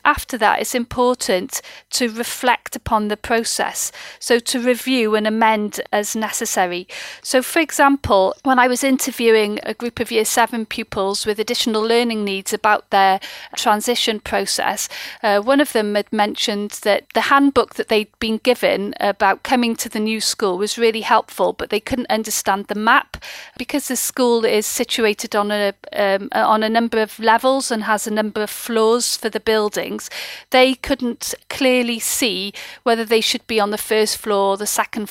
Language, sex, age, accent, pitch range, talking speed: English, female, 40-59, British, 210-240 Hz, 175 wpm